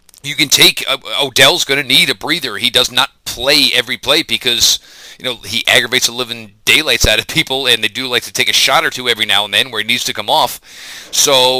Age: 30-49